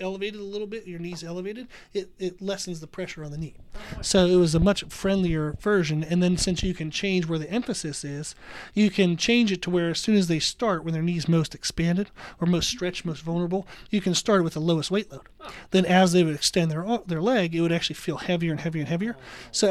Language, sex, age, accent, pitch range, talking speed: English, male, 30-49, American, 160-195 Hz, 240 wpm